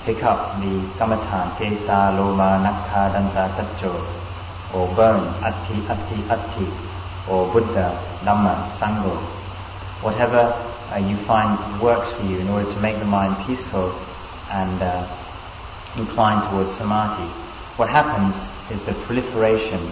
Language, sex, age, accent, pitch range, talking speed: English, male, 30-49, British, 95-110 Hz, 120 wpm